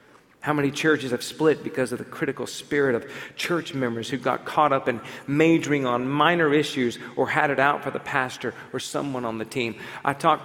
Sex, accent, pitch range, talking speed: male, American, 130-175 Hz, 205 wpm